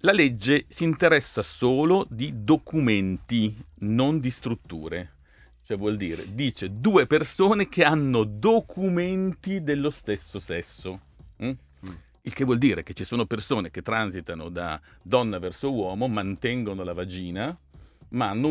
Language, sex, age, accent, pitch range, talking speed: Italian, male, 50-69, native, 95-140 Hz, 135 wpm